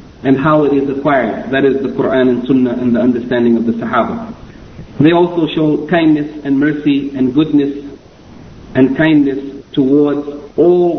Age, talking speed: 50-69, 160 wpm